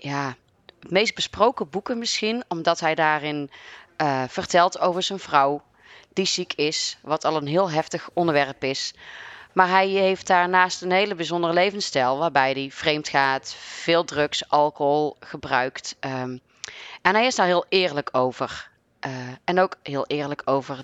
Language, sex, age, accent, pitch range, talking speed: Dutch, female, 30-49, Dutch, 140-180 Hz, 155 wpm